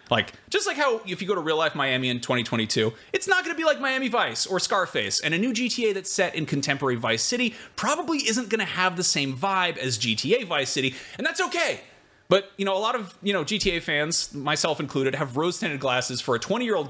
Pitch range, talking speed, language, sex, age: 130-205 Hz, 230 wpm, English, male, 30-49